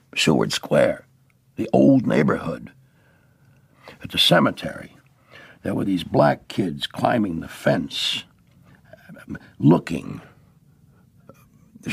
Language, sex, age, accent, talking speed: English, male, 60-79, American, 90 wpm